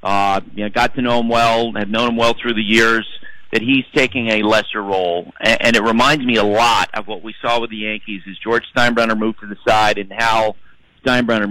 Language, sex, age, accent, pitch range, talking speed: English, male, 50-69, American, 105-120 Hz, 230 wpm